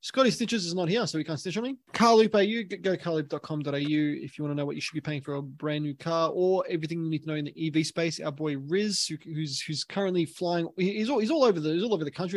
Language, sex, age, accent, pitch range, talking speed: English, male, 20-39, Australian, 150-185 Hz, 285 wpm